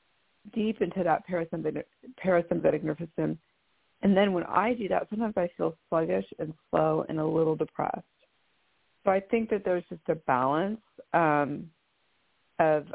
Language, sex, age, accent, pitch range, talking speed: English, female, 40-59, American, 150-185 Hz, 155 wpm